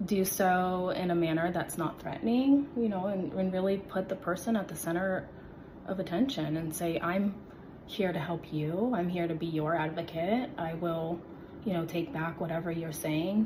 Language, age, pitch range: English, 30-49, 165-190 Hz